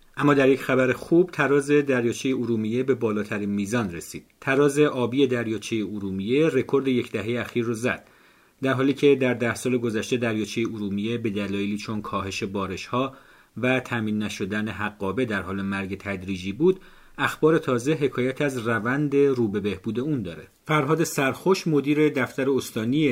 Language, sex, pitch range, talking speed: Persian, male, 105-135 Hz, 155 wpm